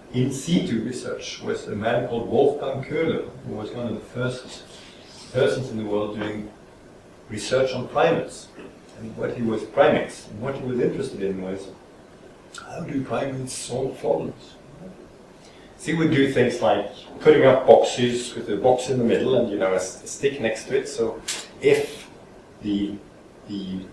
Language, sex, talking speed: English, male, 170 wpm